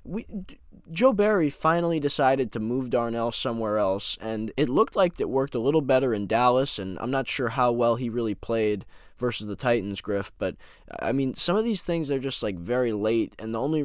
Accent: American